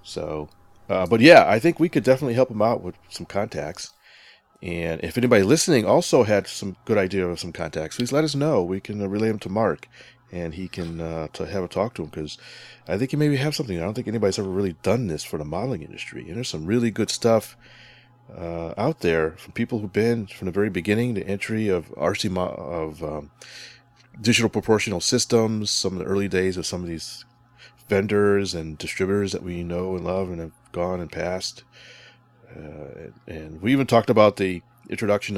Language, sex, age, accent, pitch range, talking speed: English, male, 30-49, American, 90-120 Hz, 205 wpm